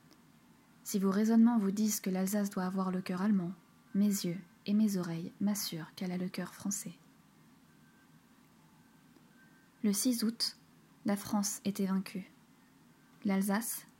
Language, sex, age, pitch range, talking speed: French, female, 20-39, 190-215 Hz, 135 wpm